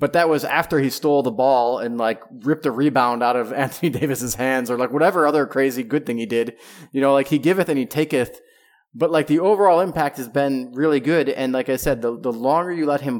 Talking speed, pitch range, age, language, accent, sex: 245 wpm, 115-140 Hz, 20-39, English, American, male